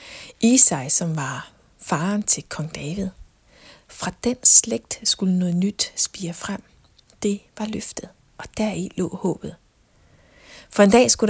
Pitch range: 170-215 Hz